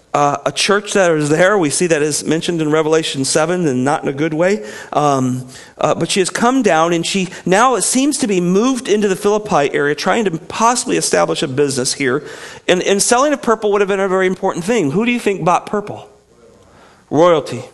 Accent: American